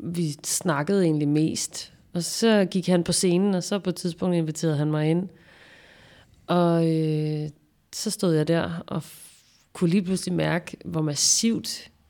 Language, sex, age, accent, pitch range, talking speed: Danish, female, 30-49, native, 160-185 Hz, 155 wpm